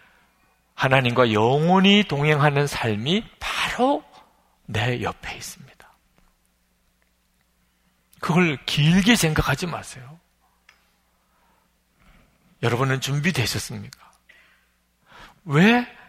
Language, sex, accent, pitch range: Korean, male, native, 105-175 Hz